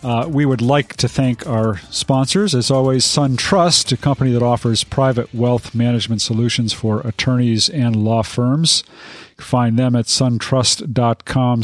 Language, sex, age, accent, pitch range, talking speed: English, male, 40-59, American, 115-135 Hz, 155 wpm